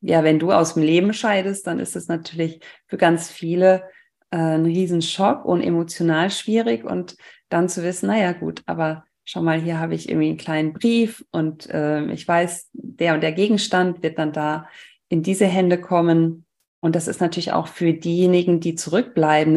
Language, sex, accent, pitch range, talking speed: German, female, German, 165-205 Hz, 180 wpm